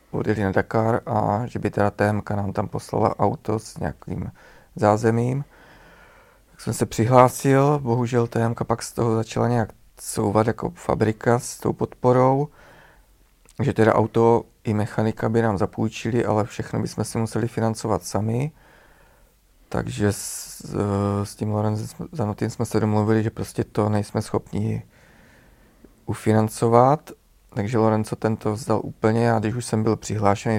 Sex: male